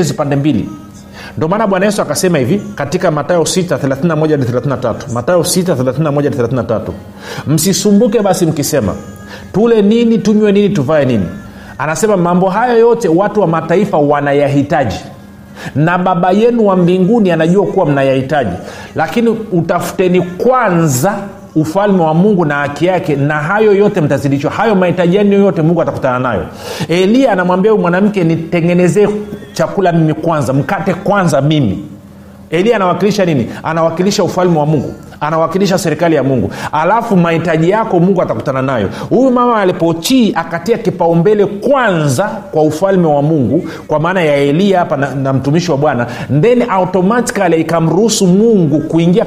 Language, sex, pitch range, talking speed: Swahili, male, 150-195 Hz, 135 wpm